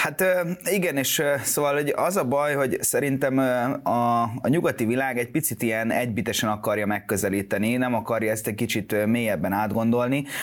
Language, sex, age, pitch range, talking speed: Hungarian, male, 30-49, 110-145 Hz, 155 wpm